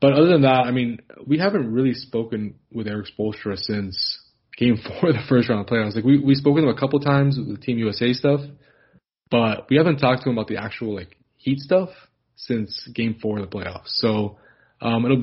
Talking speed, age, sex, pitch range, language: 230 wpm, 20-39, male, 105-130 Hz, English